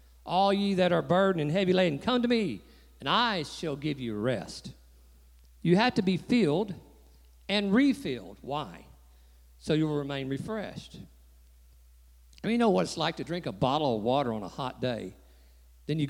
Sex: male